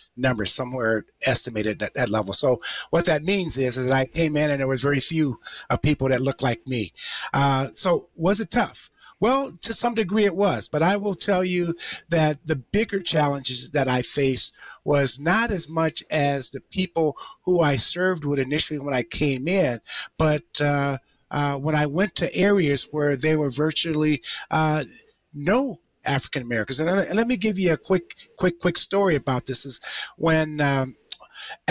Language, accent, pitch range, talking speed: English, American, 135-175 Hz, 180 wpm